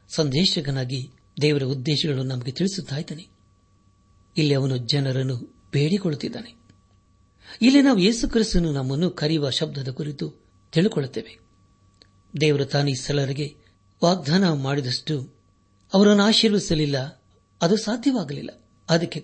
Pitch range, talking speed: 105-165 Hz, 80 wpm